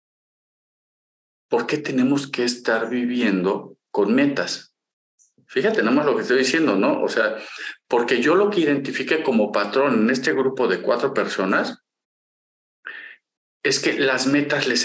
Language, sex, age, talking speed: Spanish, male, 50-69, 145 wpm